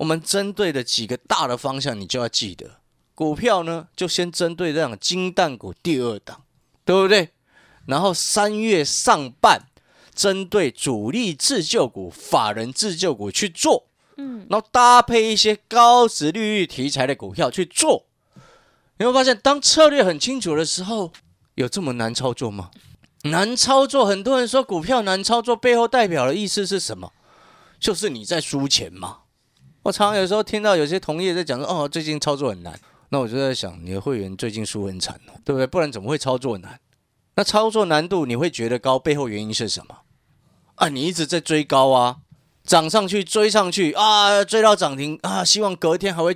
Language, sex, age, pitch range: Chinese, male, 30-49, 130-205 Hz